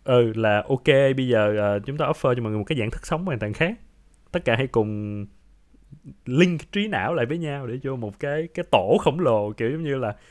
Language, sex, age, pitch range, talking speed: Vietnamese, male, 20-39, 110-170 Hz, 240 wpm